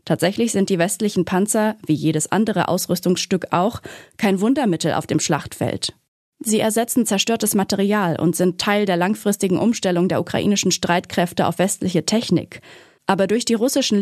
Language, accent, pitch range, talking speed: German, German, 175-225 Hz, 150 wpm